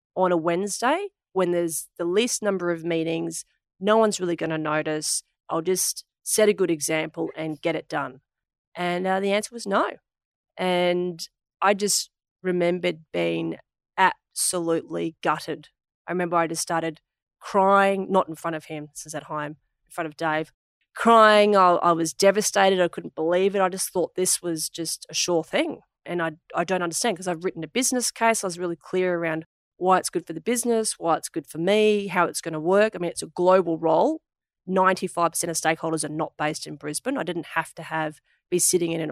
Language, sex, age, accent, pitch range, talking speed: English, female, 30-49, Australian, 160-190 Hz, 200 wpm